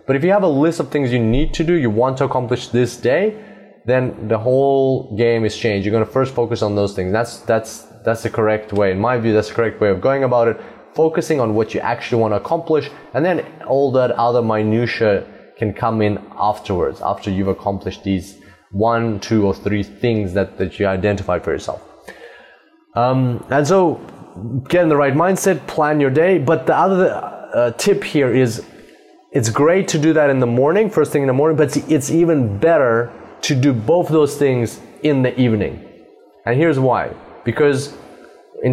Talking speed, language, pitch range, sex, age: 200 wpm, English, 110-145 Hz, male, 20-39